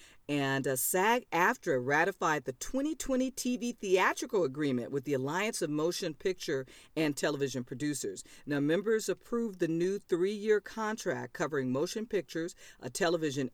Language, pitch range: English, 135-180 Hz